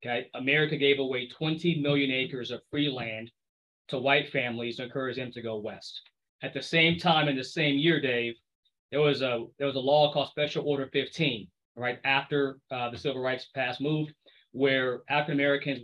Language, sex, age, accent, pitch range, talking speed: English, male, 20-39, American, 130-160 Hz, 190 wpm